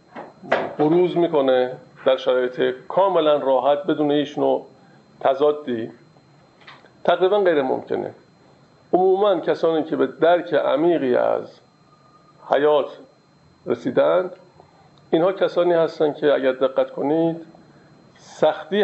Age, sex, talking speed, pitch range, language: 50-69, male, 90 wpm, 140-175 Hz, Persian